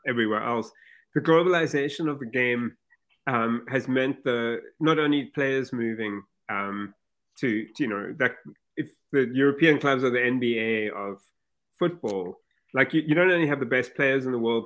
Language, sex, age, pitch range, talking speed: English, male, 30-49, 120-155 Hz, 170 wpm